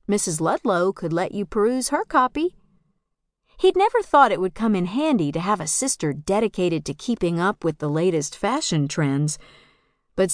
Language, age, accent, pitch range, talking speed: English, 50-69, American, 175-275 Hz, 175 wpm